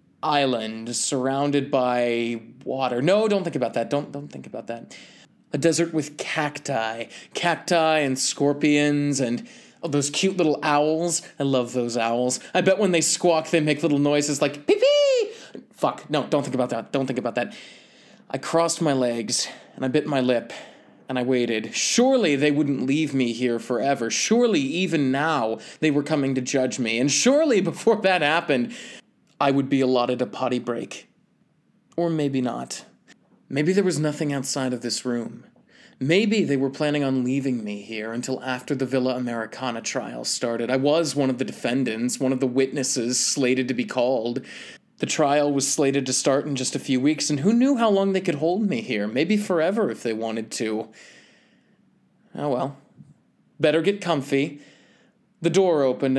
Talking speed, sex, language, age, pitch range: 180 wpm, male, English, 20-39, 130-170 Hz